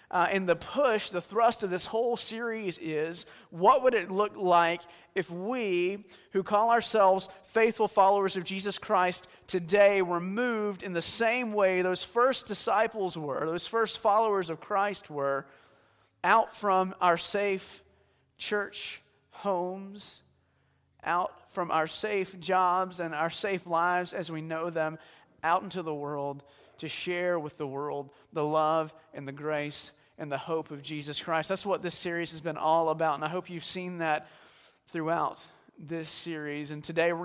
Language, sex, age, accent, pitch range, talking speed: English, male, 30-49, American, 165-205 Hz, 165 wpm